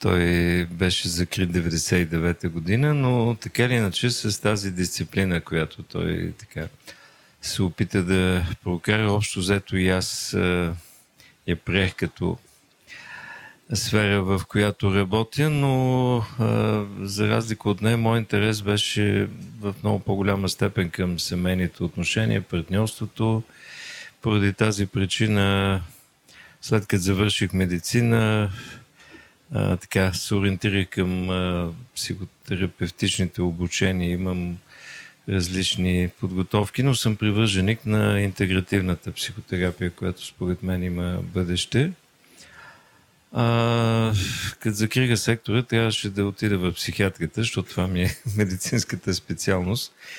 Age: 50-69